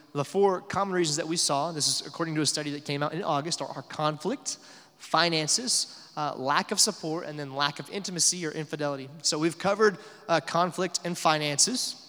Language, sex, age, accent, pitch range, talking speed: English, male, 20-39, American, 145-170 Hz, 195 wpm